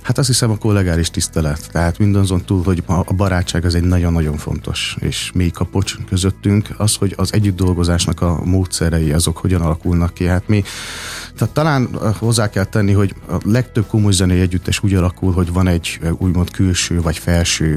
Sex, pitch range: male, 85-95 Hz